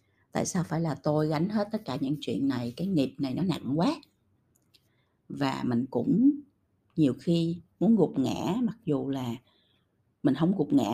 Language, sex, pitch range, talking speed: Vietnamese, female, 125-175 Hz, 180 wpm